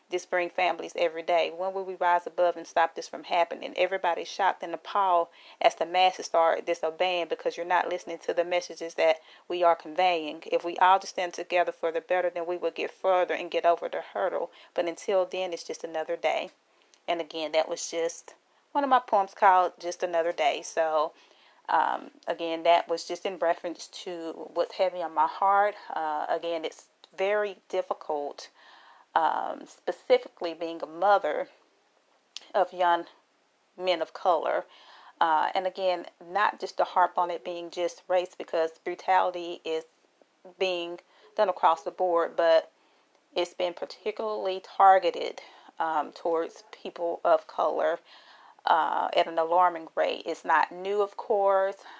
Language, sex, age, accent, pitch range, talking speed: English, female, 30-49, American, 165-185 Hz, 165 wpm